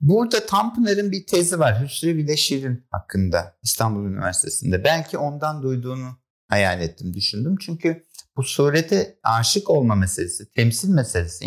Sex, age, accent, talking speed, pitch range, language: male, 60-79, native, 125 wpm, 115-165 Hz, Turkish